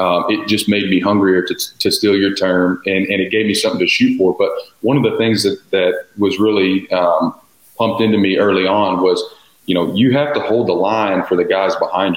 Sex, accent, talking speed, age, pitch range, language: male, American, 235 wpm, 30-49, 95-105 Hz, English